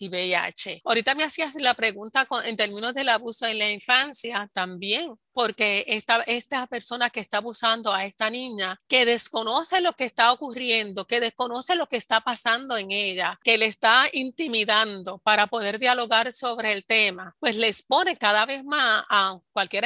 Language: Spanish